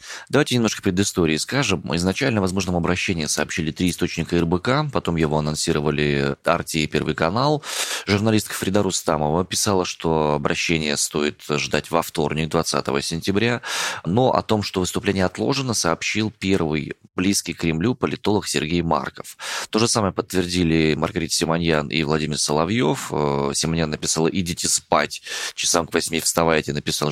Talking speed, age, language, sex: 135 wpm, 20-39, Russian, male